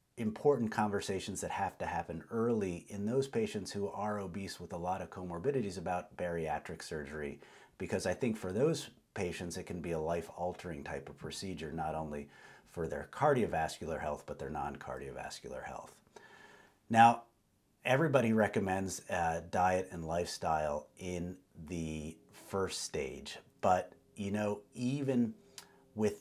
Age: 40-59